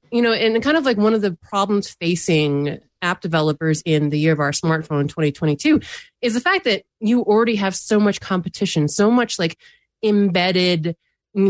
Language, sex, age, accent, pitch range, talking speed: English, female, 30-49, American, 160-210 Hz, 185 wpm